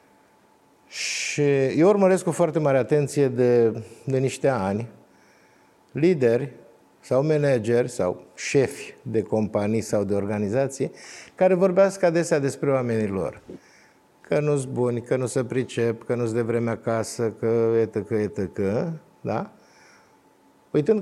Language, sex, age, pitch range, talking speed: Romanian, male, 50-69, 115-145 Hz, 125 wpm